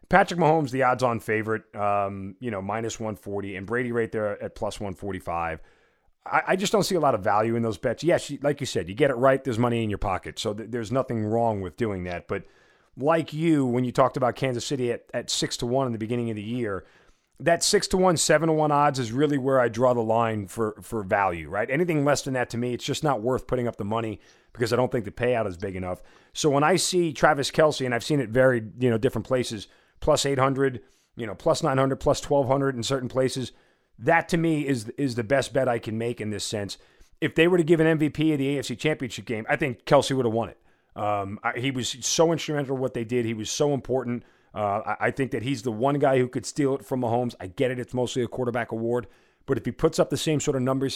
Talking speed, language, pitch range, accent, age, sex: 255 wpm, English, 115-140 Hz, American, 40-59, male